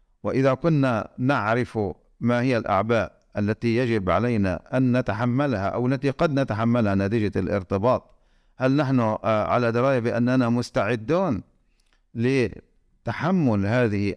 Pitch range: 110-140 Hz